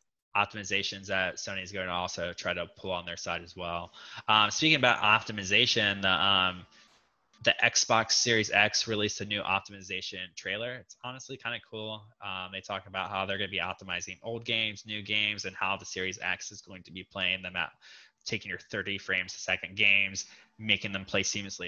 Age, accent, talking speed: 20-39, American, 200 wpm